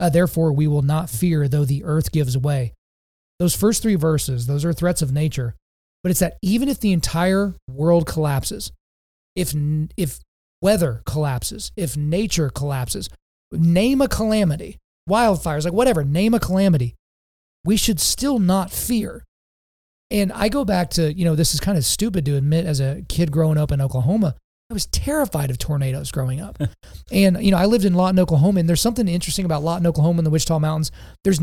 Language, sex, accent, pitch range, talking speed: English, male, American, 145-185 Hz, 185 wpm